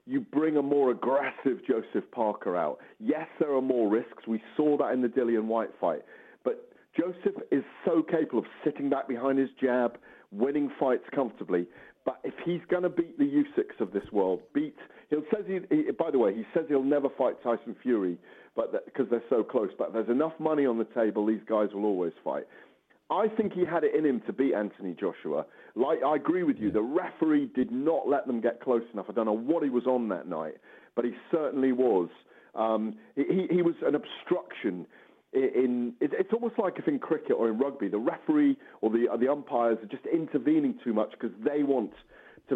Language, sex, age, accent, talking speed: English, male, 40-59, British, 210 wpm